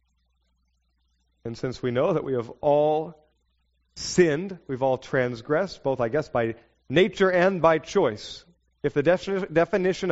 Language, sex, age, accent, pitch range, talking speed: English, male, 40-59, American, 125-190 Hz, 135 wpm